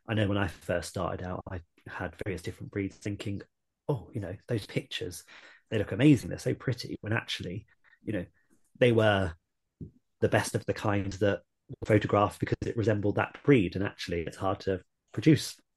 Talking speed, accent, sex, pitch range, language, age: 185 wpm, British, male, 95-115 Hz, English, 30-49